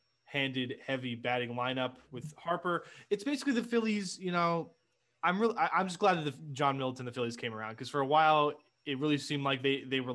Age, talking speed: 20-39, 215 wpm